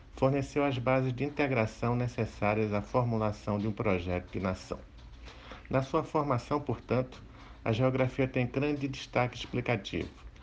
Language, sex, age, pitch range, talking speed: Portuguese, male, 60-79, 100-130 Hz, 130 wpm